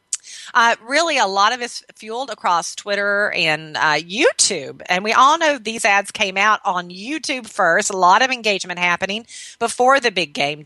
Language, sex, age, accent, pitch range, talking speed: English, female, 40-59, American, 180-235 Hz, 180 wpm